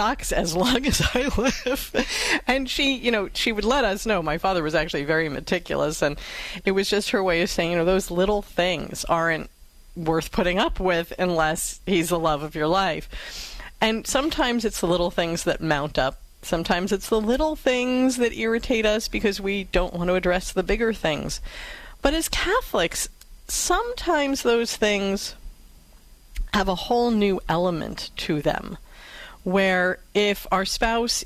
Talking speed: 170 wpm